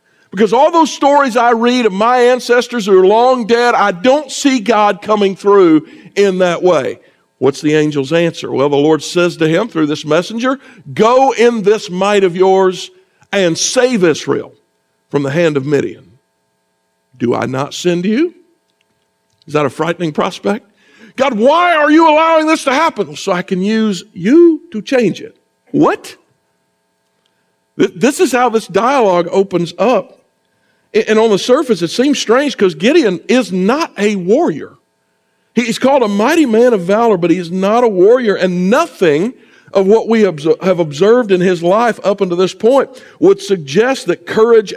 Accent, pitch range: American, 175-245 Hz